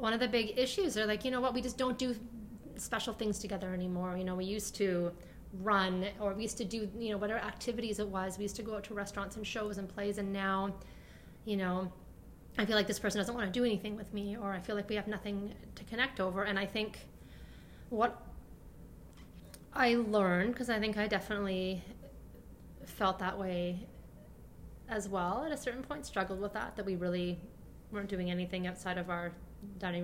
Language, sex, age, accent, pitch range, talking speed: English, female, 30-49, American, 185-220 Hz, 210 wpm